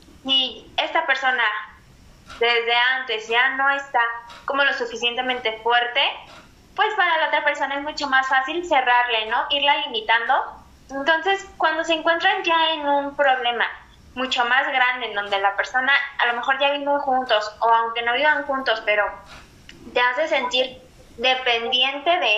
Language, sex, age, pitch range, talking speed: Spanish, female, 20-39, 240-300 Hz, 155 wpm